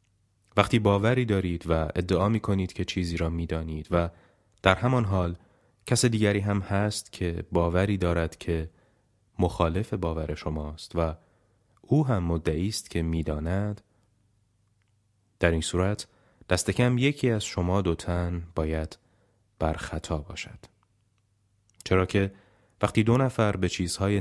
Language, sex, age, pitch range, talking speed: Persian, male, 30-49, 85-105 Hz, 135 wpm